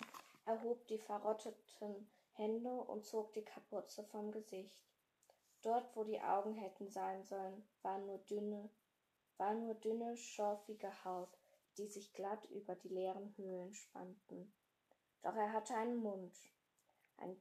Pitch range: 195-225 Hz